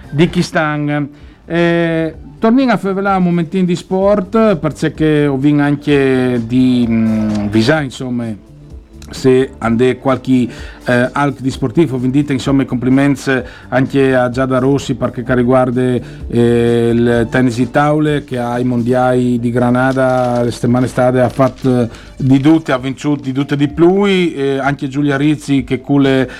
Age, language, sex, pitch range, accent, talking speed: 50-69, Italian, male, 125-140 Hz, native, 140 wpm